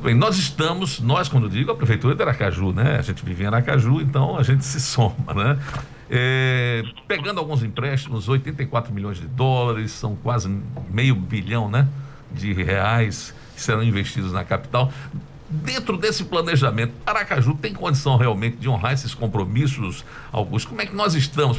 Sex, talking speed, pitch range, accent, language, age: male, 165 wpm, 115-140 Hz, Brazilian, Portuguese, 60-79